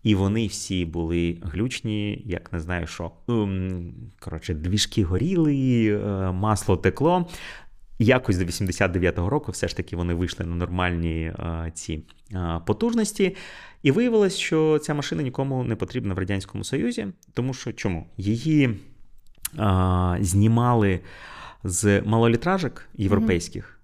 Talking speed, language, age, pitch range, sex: 125 wpm, Ukrainian, 30-49, 95-120 Hz, male